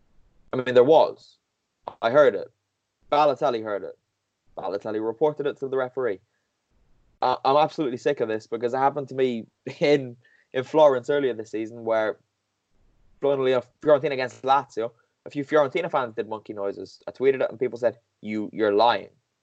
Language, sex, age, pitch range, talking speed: English, male, 10-29, 110-145 Hz, 165 wpm